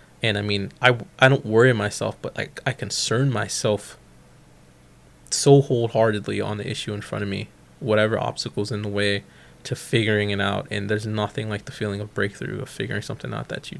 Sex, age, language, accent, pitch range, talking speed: male, 20-39, English, American, 105-130 Hz, 195 wpm